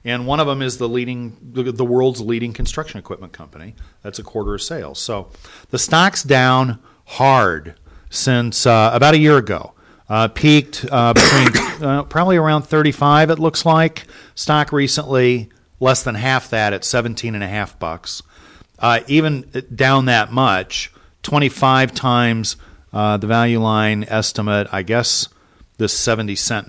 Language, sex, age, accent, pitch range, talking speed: English, male, 40-59, American, 100-130 Hz, 155 wpm